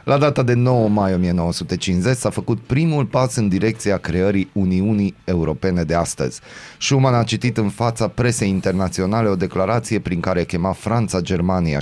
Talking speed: 155 wpm